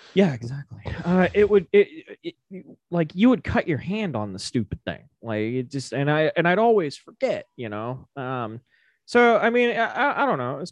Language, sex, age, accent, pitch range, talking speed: English, male, 20-39, American, 125-205 Hz, 215 wpm